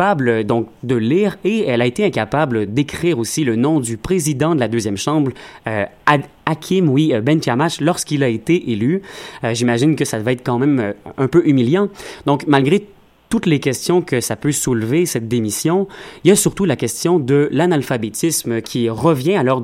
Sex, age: male, 30-49